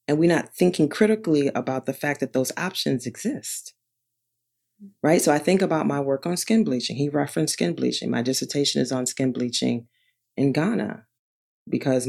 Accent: American